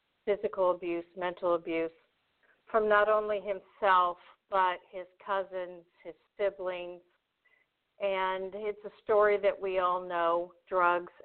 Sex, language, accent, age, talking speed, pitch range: female, English, American, 50-69, 115 wpm, 185-210 Hz